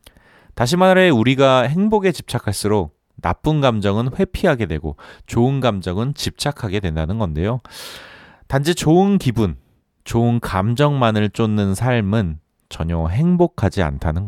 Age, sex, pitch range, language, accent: 30-49, male, 90-145 Hz, Korean, native